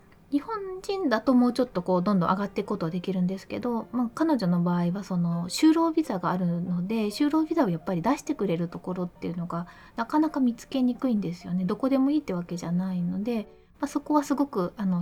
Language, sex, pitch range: Japanese, female, 185-265 Hz